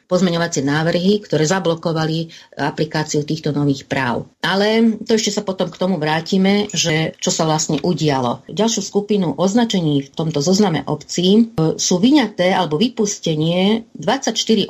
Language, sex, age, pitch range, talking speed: Slovak, female, 40-59, 150-195 Hz, 135 wpm